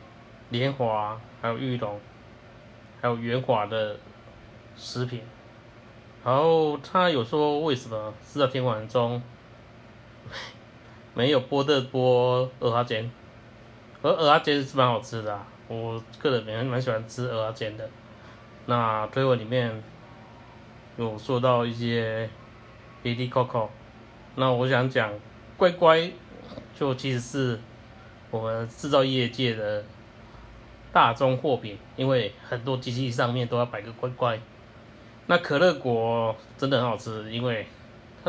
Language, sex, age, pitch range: Chinese, male, 20-39, 115-130 Hz